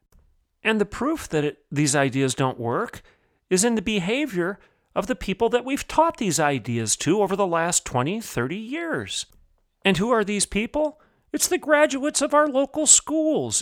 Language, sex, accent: English, male, American